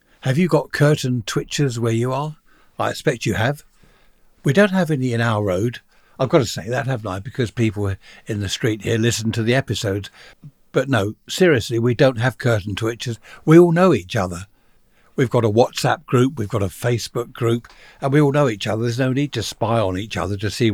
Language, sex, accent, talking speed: English, male, British, 215 wpm